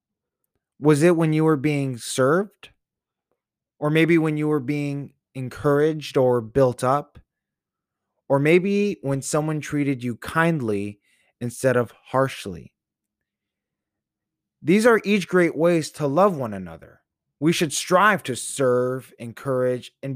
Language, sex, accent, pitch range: English, male, American, 120-160 Hz